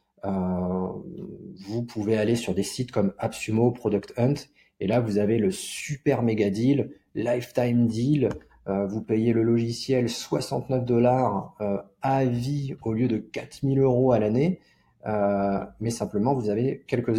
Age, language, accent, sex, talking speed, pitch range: 30-49, French, French, male, 155 wpm, 105-135 Hz